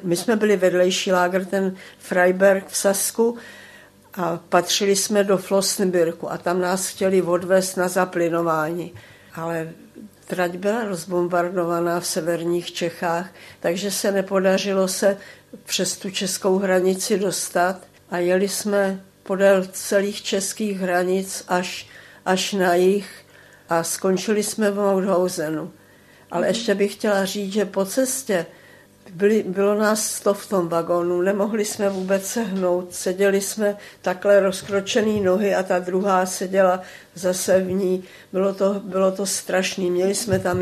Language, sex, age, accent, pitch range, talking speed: Czech, female, 50-69, native, 180-200 Hz, 135 wpm